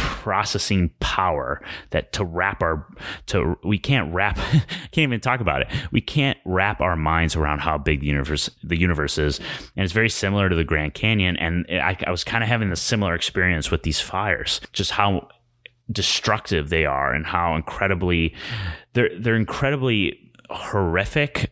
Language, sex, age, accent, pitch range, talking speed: English, male, 30-49, American, 80-105 Hz, 170 wpm